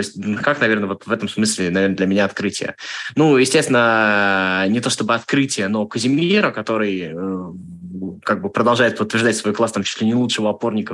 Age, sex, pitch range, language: 20-39, male, 110-135 Hz, Russian